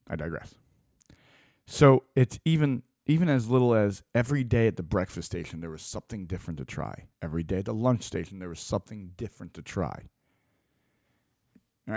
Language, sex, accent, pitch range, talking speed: English, male, American, 90-120 Hz, 170 wpm